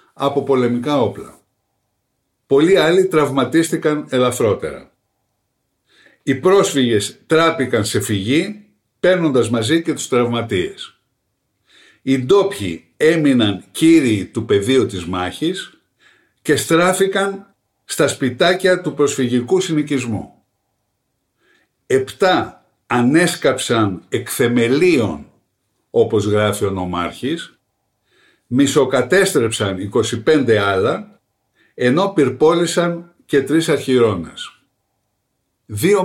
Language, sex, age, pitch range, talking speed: Greek, male, 60-79, 115-185 Hz, 80 wpm